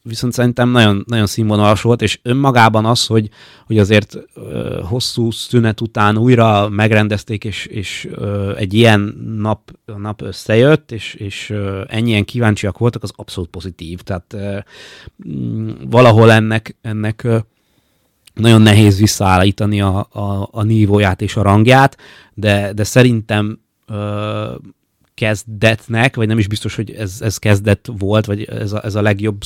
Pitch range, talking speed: 105-120 Hz, 130 wpm